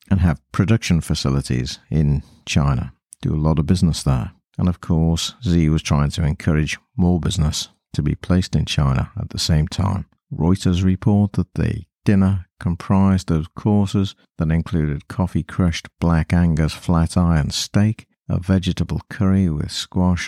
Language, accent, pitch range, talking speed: English, British, 80-95 Hz, 155 wpm